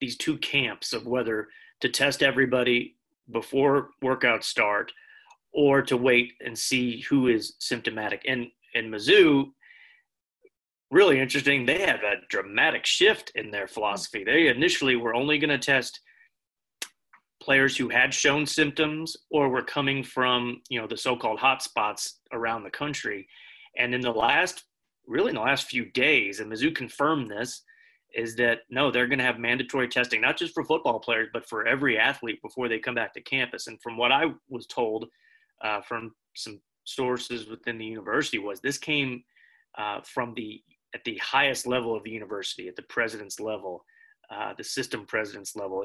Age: 30-49